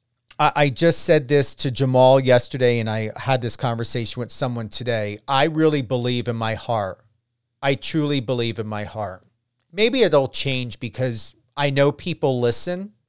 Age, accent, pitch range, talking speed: 40-59, American, 115-150 Hz, 160 wpm